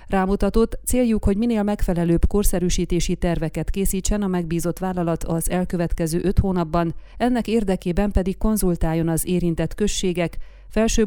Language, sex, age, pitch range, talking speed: Hungarian, female, 30-49, 170-200 Hz, 125 wpm